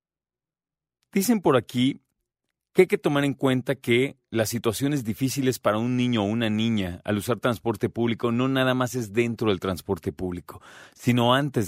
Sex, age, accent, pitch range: male, 40-59, Mexican, 100-130 Hz